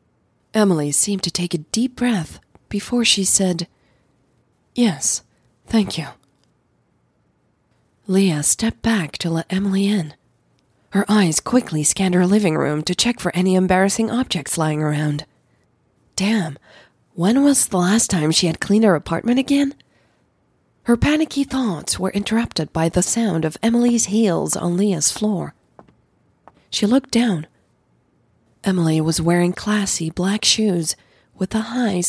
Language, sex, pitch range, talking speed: English, female, 165-220 Hz, 135 wpm